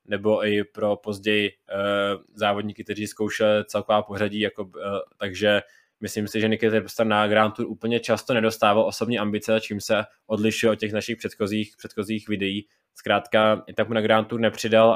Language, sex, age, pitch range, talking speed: Czech, male, 20-39, 105-115 Hz, 170 wpm